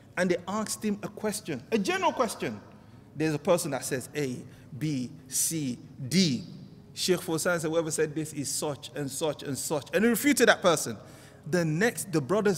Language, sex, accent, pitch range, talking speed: English, male, Nigerian, 140-210 Hz, 185 wpm